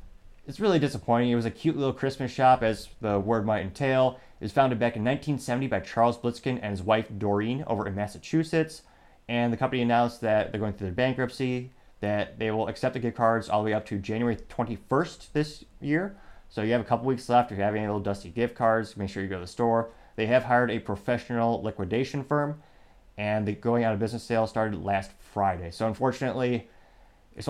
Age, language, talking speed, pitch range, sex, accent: 30-49, English, 215 wpm, 100-125 Hz, male, American